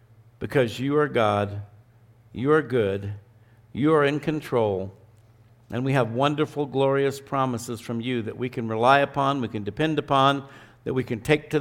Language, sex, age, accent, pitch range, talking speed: English, male, 60-79, American, 120-150 Hz, 170 wpm